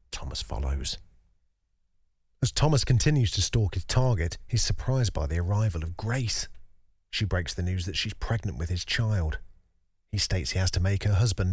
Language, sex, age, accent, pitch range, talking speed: English, male, 40-59, British, 85-105 Hz, 175 wpm